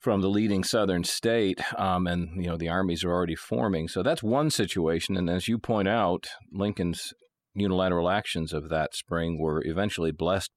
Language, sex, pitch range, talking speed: English, male, 80-105 Hz, 180 wpm